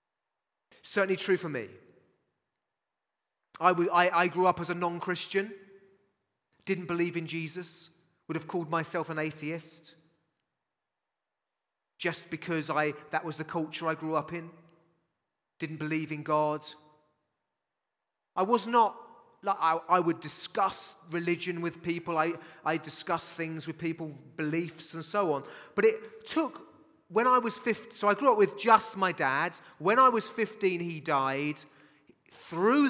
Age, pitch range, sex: 30-49, 160-205 Hz, male